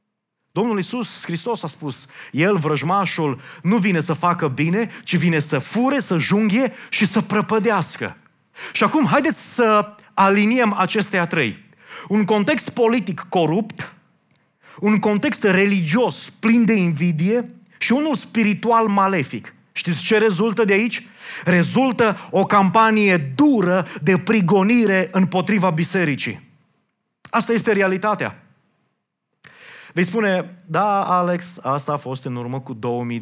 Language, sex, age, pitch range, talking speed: Romanian, male, 30-49, 145-205 Hz, 125 wpm